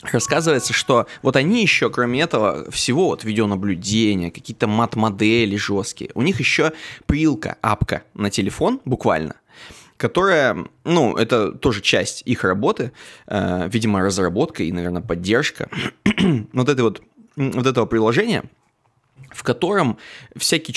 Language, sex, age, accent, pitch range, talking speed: Russian, male, 20-39, native, 105-135 Hz, 120 wpm